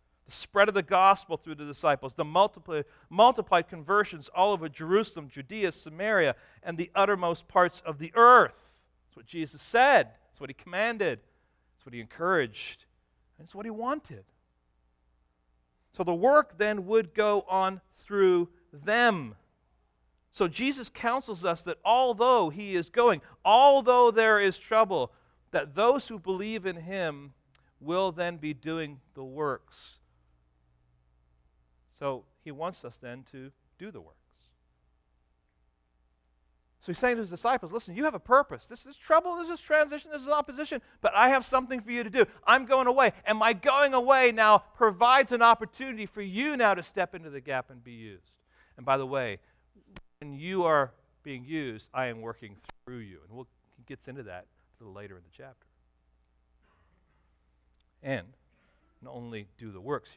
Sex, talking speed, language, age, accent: male, 165 wpm, English, 40-59, American